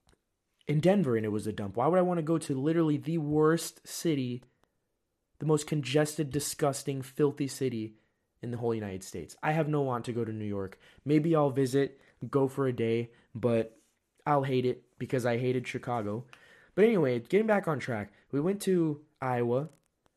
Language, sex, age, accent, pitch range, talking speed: English, male, 20-39, American, 115-145 Hz, 185 wpm